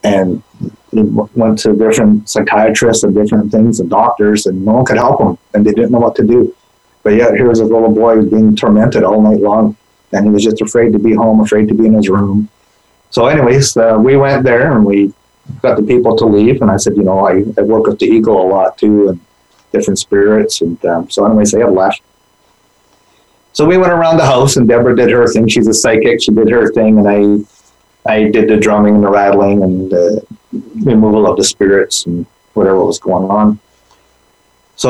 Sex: male